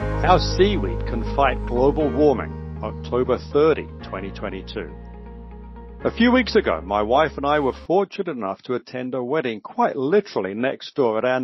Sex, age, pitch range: male, 60-79, 125-175 Hz